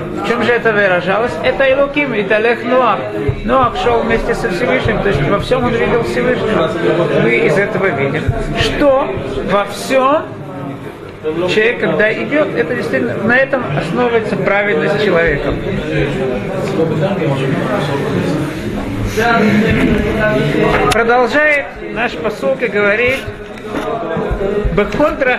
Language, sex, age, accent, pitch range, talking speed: Russian, male, 50-69, native, 200-260 Hz, 105 wpm